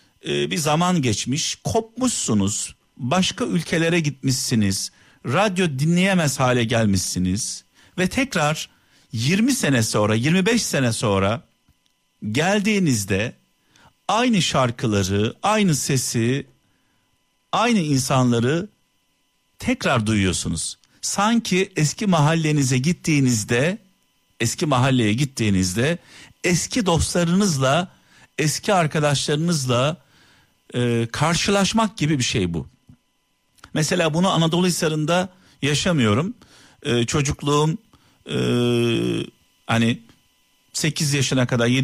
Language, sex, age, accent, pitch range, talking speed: Turkish, male, 50-69, native, 120-175 Hz, 80 wpm